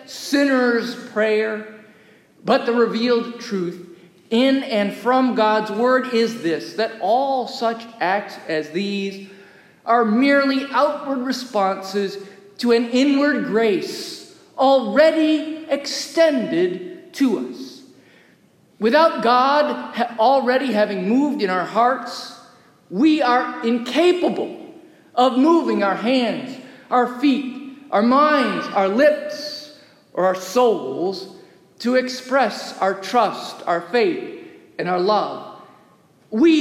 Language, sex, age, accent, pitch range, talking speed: English, male, 50-69, American, 215-290 Hz, 105 wpm